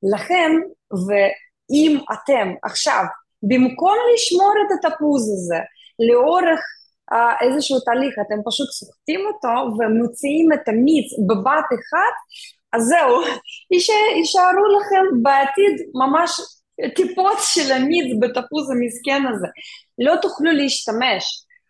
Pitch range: 230-335 Hz